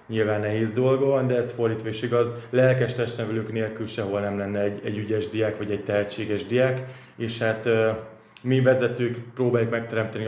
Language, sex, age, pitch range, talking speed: Hungarian, male, 20-39, 105-120 Hz, 170 wpm